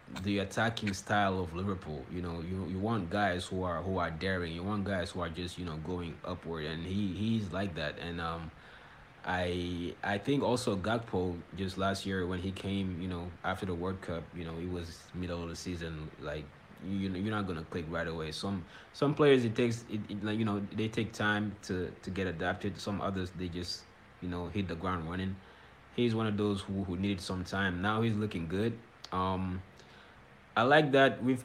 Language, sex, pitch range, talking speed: English, male, 85-105 Hz, 215 wpm